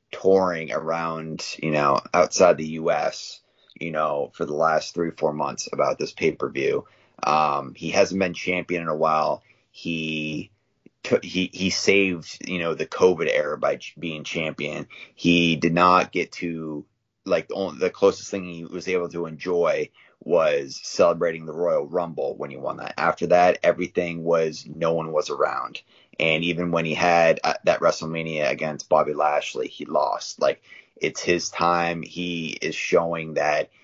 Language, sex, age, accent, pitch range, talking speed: English, male, 30-49, American, 80-90 Hz, 165 wpm